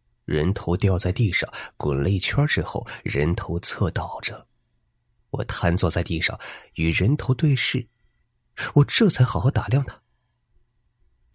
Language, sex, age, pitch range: Chinese, male, 30-49, 90-125 Hz